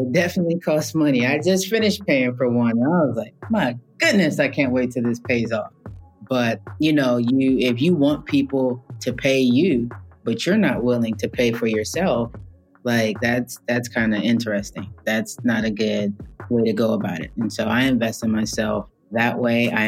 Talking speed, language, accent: 195 wpm, English, American